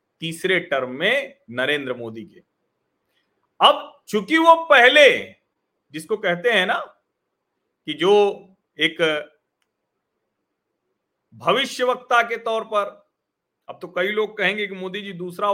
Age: 40-59